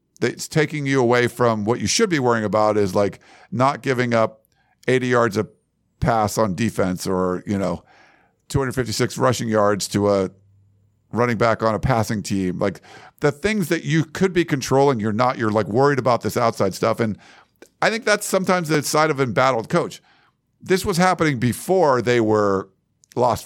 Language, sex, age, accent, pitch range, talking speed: English, male, 50-69, American, 105-135 Hz, 180 wpm